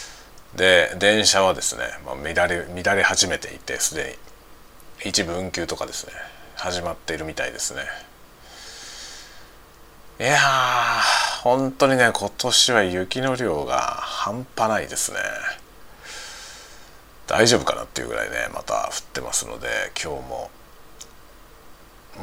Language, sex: Japanese, male